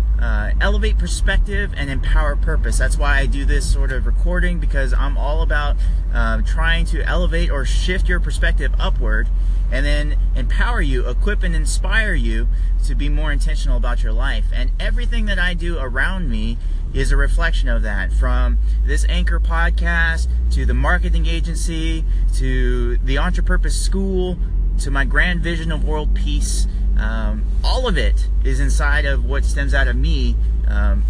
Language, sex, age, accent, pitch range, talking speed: English, male, 30-49, American, 65-80 Hz, 170 wpm